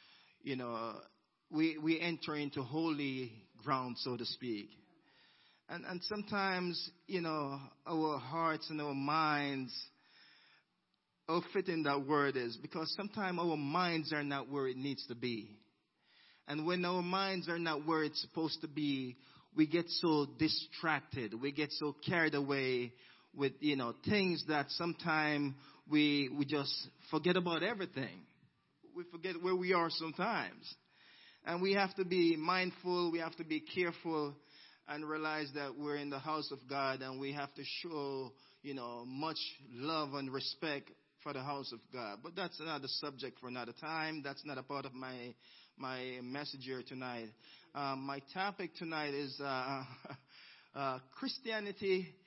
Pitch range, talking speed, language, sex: 135-170 Hz, 155 wpm, English, male